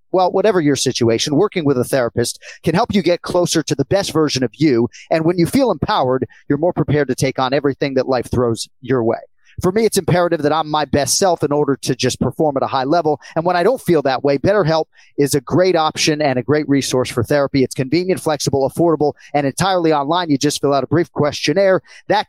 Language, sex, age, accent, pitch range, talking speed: English, male, 40-59, American, 135-175 Hz, 235 wpm